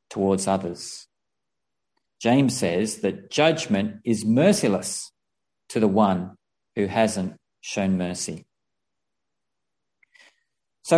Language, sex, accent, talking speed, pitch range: English, male, Australian, 85 wpm, 110-150 Hz